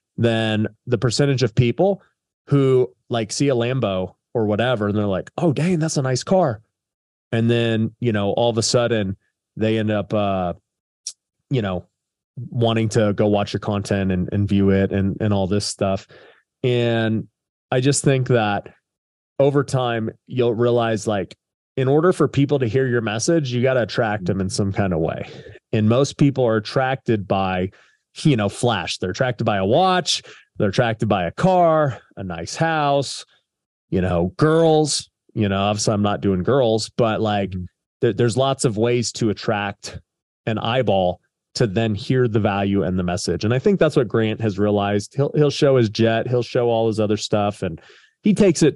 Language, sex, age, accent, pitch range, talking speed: English, male, 30-49, American, 100-130 Hz, 185 wpm